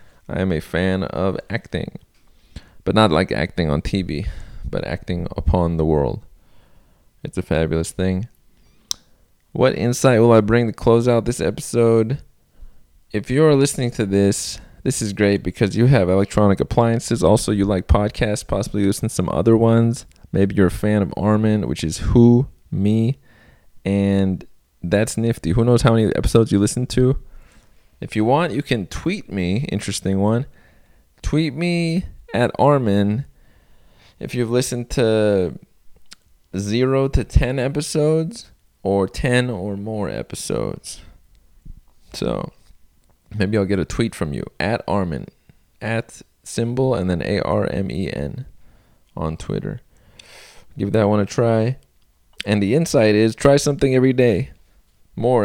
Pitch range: 95-120 Hz